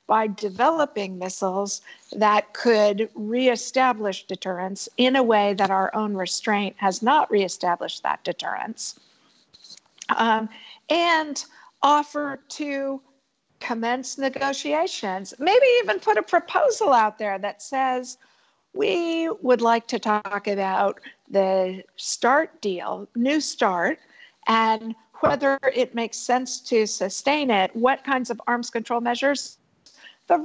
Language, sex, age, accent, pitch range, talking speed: English, female, 50-69, American, 205-275 Hz, 120 wpm